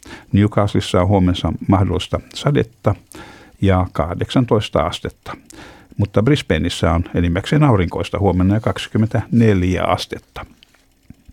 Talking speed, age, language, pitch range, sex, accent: 90 wpm, 60-79, Finnish, 90-110 Hz, male, native